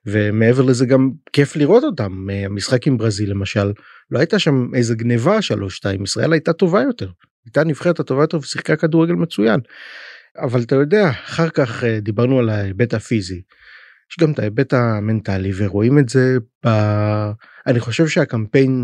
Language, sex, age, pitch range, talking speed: Hebrew, male, 30-49, 110-135 Hz, 155 wpm